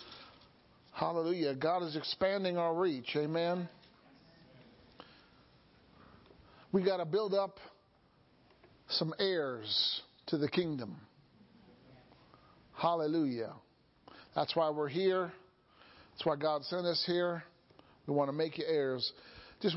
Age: 50-69